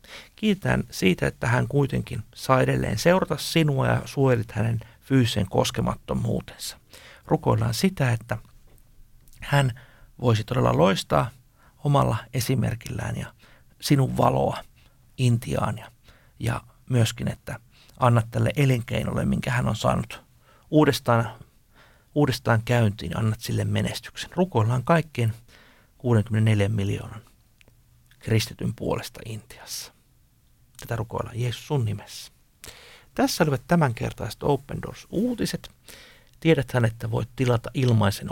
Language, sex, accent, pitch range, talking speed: Finnish, male, native, 115-140 Hz, 105 wpm